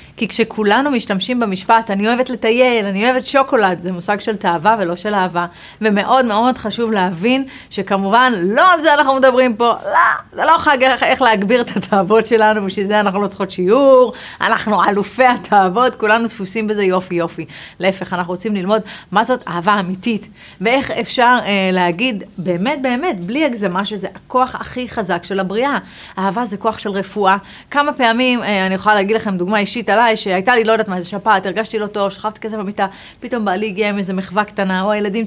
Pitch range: 190-235 Hz